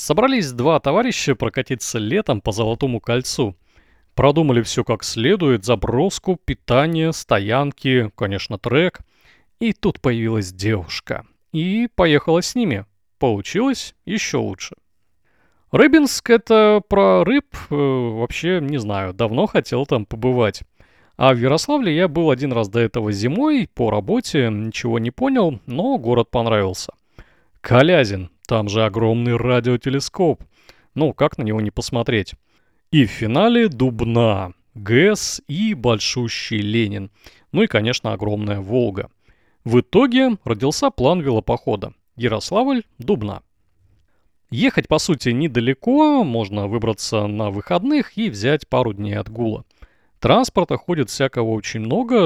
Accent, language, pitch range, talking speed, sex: native, Russian, 110-160 Hz, 125 wpm, male